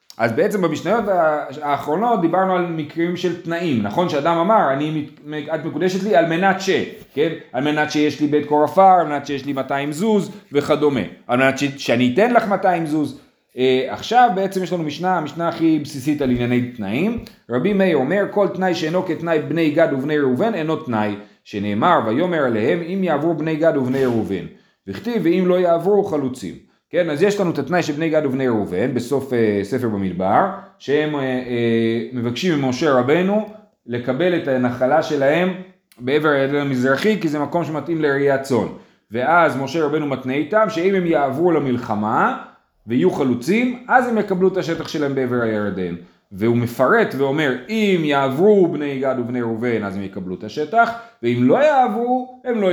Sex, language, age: male, Hebrew, 30-49